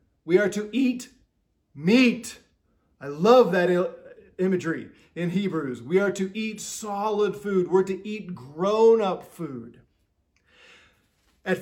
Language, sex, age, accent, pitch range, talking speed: English, male, 30-49, American, 165-215 Hz, 120 wpm